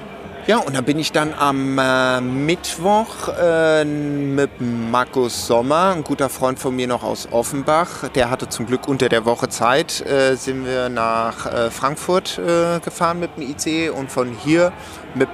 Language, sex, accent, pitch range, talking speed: German, male, German, 125-150 Hz, 170 wpm